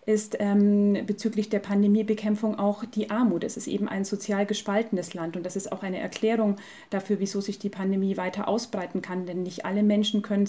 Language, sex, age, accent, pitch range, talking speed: German, female, 30-49, German, 185-210 Hz, 195 wpm